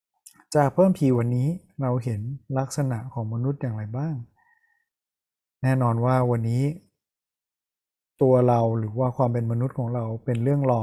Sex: male